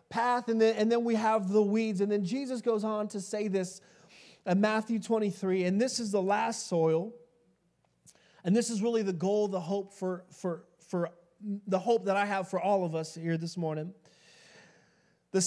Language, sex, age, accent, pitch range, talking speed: English, male, 30-49, American, 170-245 Hz, 195 wpm